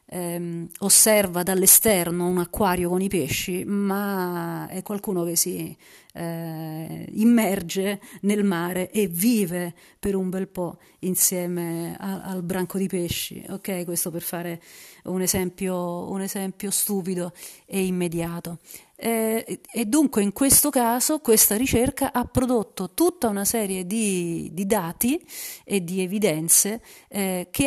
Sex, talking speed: female, 125 wpm